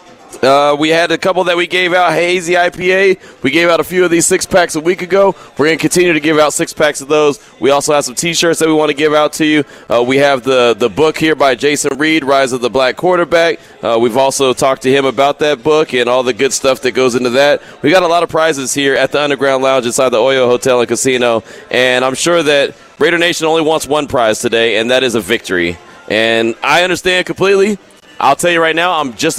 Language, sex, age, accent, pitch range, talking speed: English, male, 30-49, American, 130-165 Hz, 250 wpm